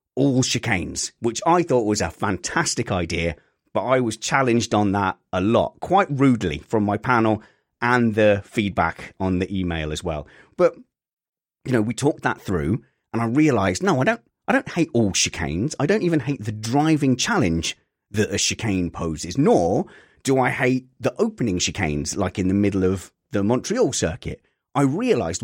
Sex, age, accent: male, 30-49, British